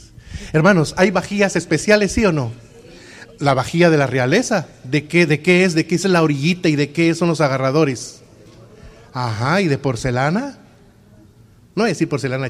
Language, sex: Spanish, male